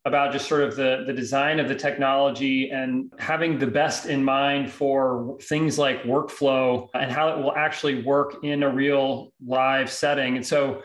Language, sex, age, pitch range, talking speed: English, male, 30-49, 135-155 Hz, 185 wpm